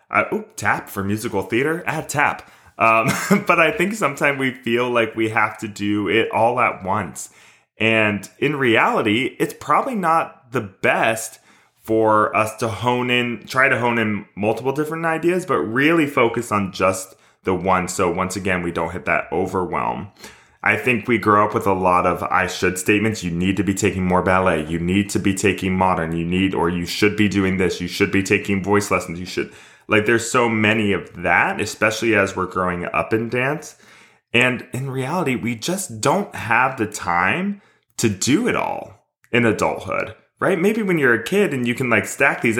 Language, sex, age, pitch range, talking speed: English, male, 20-39, 95-125 Hz, 195 wpm